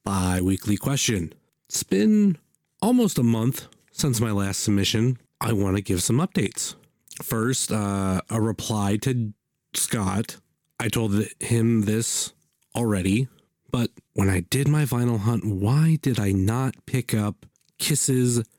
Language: English